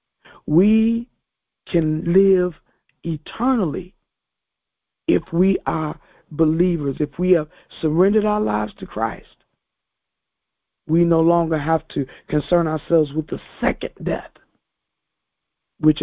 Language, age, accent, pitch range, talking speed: English, 50-69, American, 155-190 Hz, 105 wpm